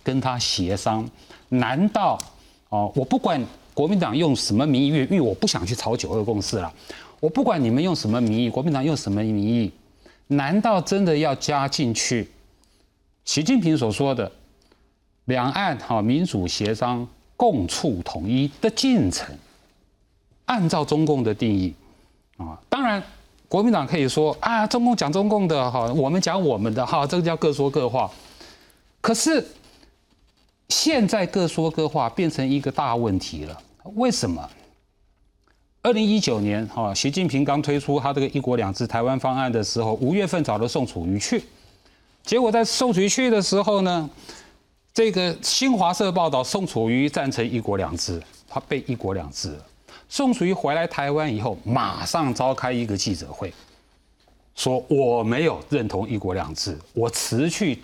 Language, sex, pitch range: Chinese, male, 110-170 Hz